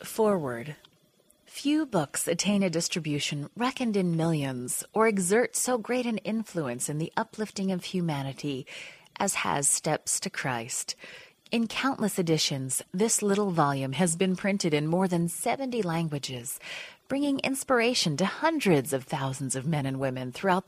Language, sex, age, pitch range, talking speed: English, female, 30-49, 155-230 Hz, 145 wpm